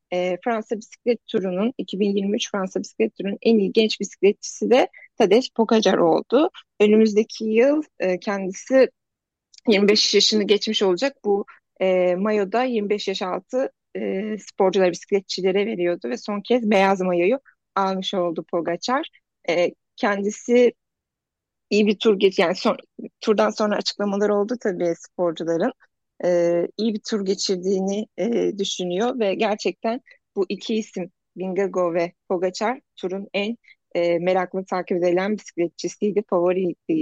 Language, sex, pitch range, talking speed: Turkish, female, 185-225 Hz, 120 wpm